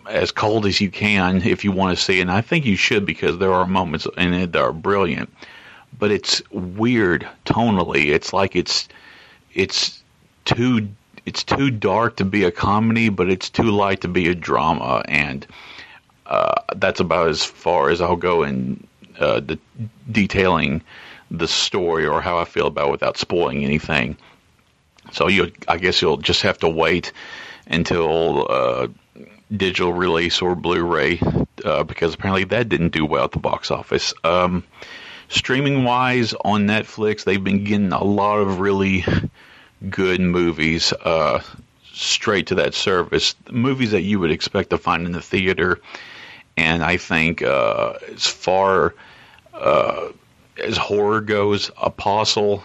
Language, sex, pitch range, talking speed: English, male, 90-105 Hz, 160 wpm